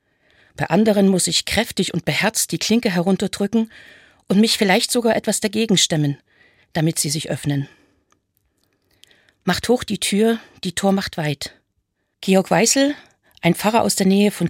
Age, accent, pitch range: 50-69, German, 165-205 Hz